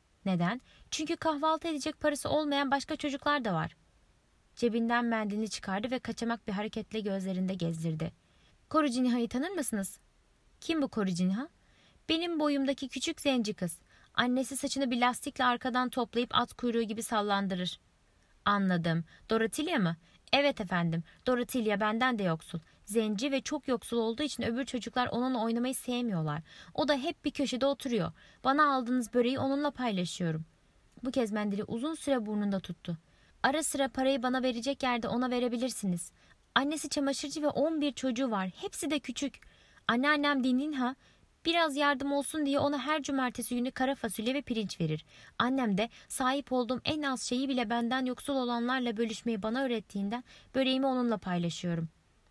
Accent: native